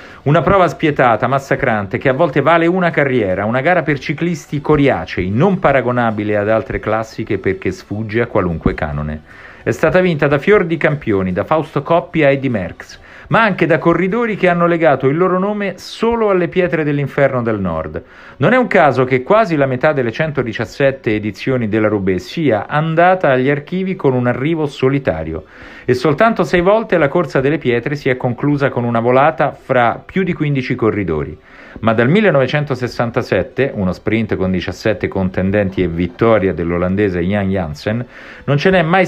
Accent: native